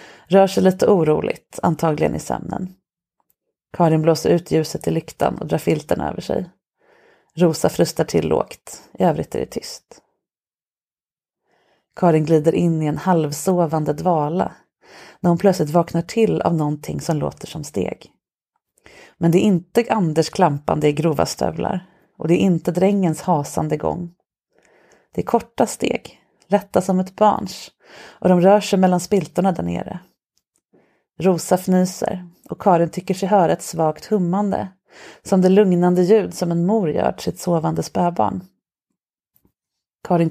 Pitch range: 165-190 Hz